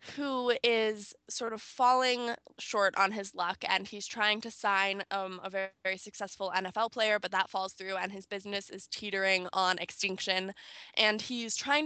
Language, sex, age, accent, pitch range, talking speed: English, female, 10-29, American, 190-215 Hz, 175 wpm